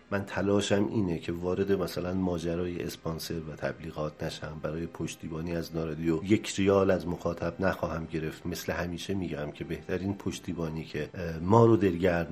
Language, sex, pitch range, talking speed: Persian, male, 80-95 Hz, 150 wpm